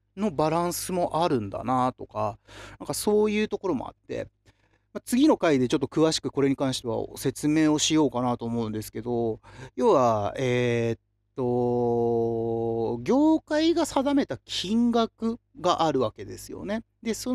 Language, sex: Japanese, male